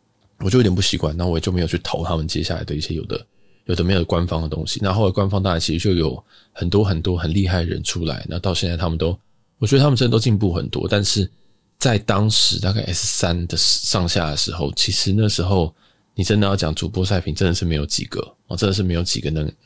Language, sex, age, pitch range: Chinese, male, 20-39, 85-105 Hz